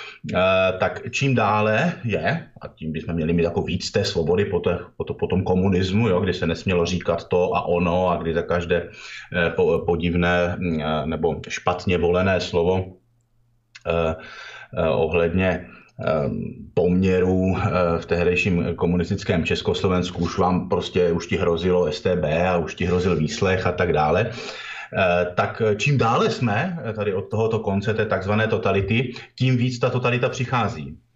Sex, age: male, 30-49